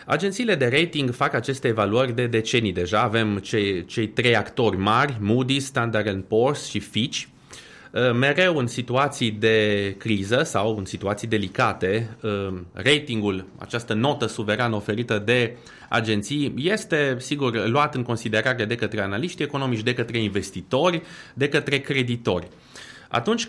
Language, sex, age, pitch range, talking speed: Romanian, male, 30-49, 110-135 Hz, 130 wpm